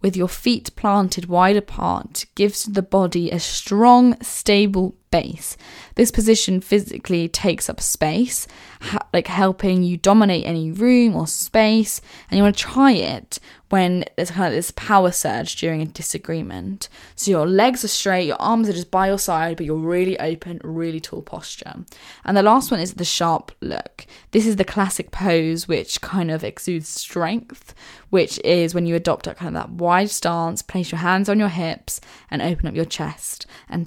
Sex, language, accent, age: female, English, British, 10-29